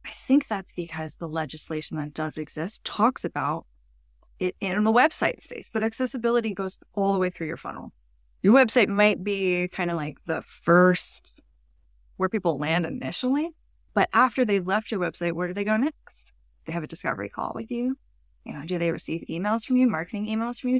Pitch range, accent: 165-225 Hz, American